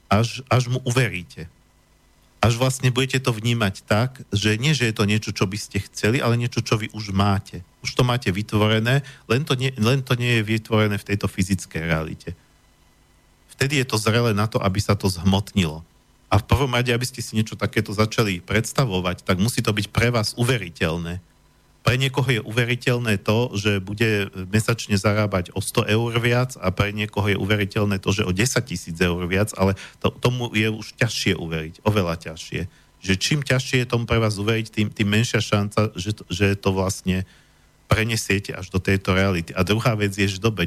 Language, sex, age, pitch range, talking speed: Slovak, male, 50-69, 95-120 Hz, 195 wpm